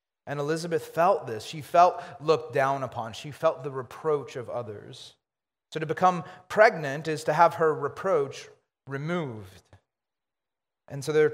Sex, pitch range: male, 130-160 Hz